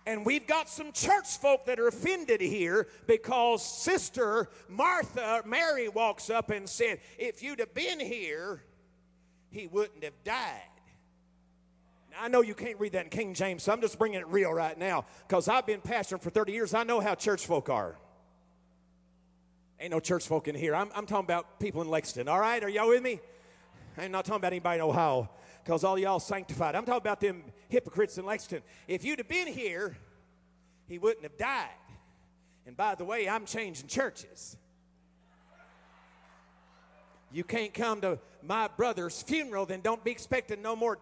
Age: 50-69